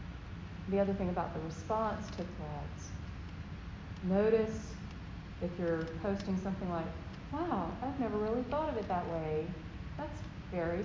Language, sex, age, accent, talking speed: English, female, 40-59, American, 140 wpm